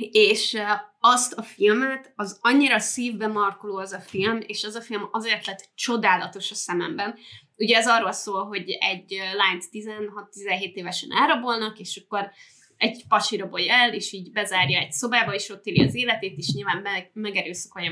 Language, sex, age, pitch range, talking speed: Hungarian, female, 20-39, 185-225 Hz, 165 wpm